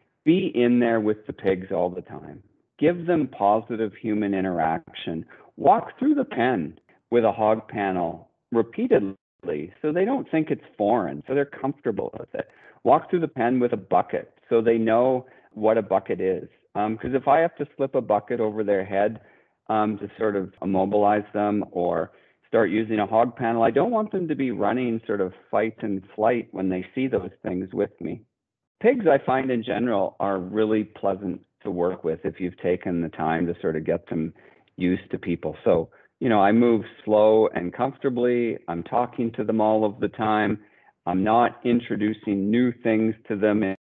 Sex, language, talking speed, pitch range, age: male, English, 190 wpm, 95-120 Hz, 40-59